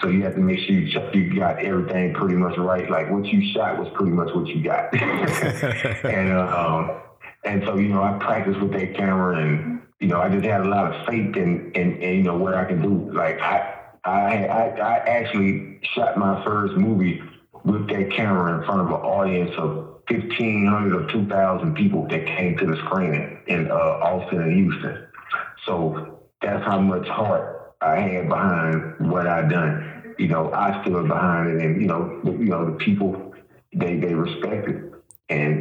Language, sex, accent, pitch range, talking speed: English, male, American, 85-105 Hz, 195 wpm